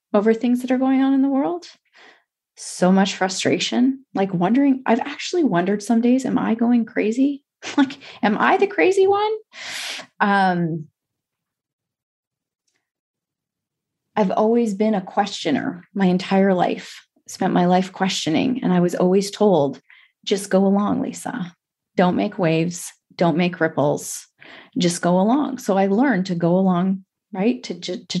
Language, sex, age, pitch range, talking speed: English, female, 30-49, 180-235 Hz, 145 wpm